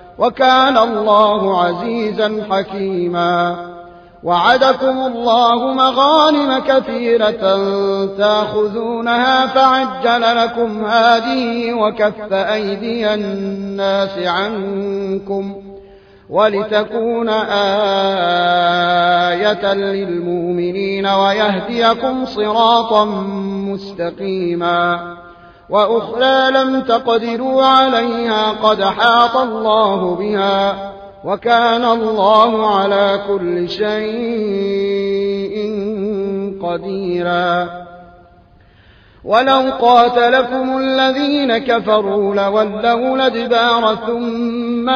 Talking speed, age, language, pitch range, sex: 55 wpm, 30-49, Arabic, 195-235 Hz, male